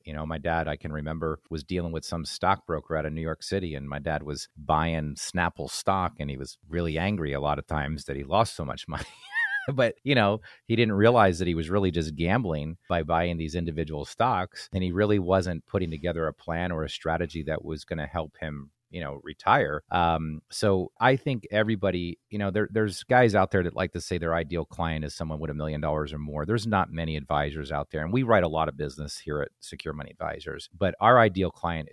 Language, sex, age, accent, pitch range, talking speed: English, male, 40-59, American, 75-95 Hz, 235 wpm